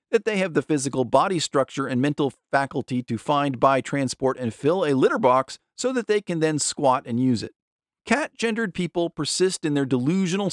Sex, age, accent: male, 40-59, American